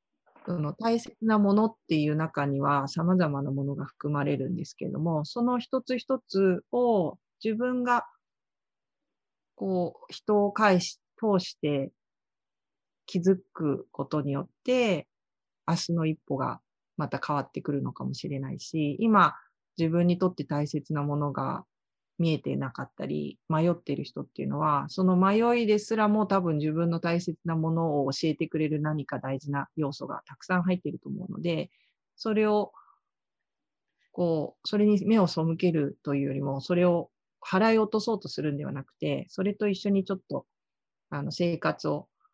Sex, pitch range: female, 145-200 Hz